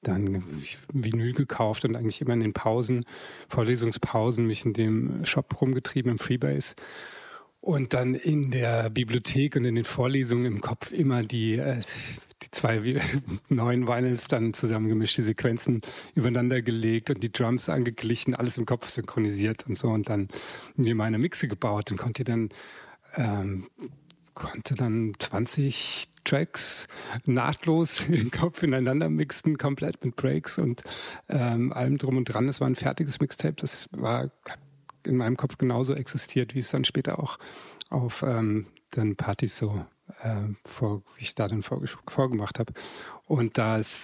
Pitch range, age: 110-130 Hz, 40-59